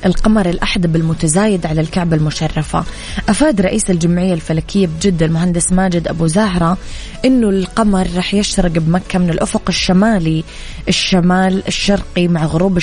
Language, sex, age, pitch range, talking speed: Arabic, female, 20-39, 170-200 Hz, 125 wpm